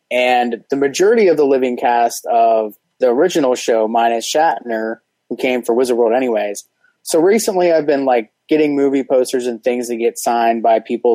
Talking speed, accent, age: 185 wpm, American, 20-39